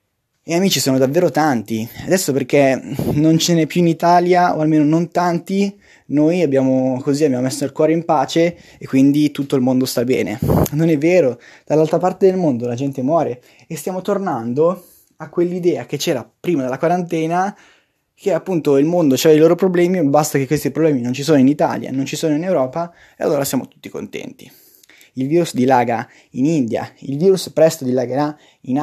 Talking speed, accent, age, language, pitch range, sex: 185 wpm, native, 20-39, Italian, 135-170 Hz, male